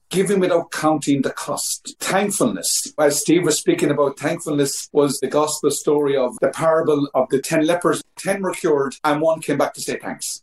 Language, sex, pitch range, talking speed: English, male, 135-175 Hz, 190 wpm